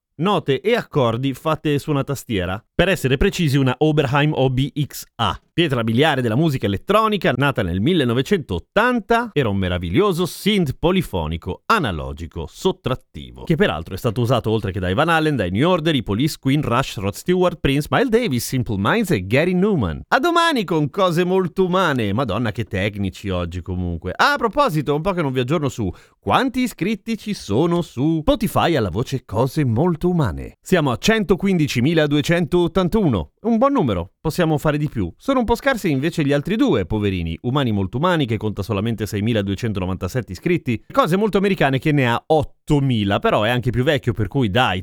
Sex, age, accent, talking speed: male, 30-49, native, 175 wpm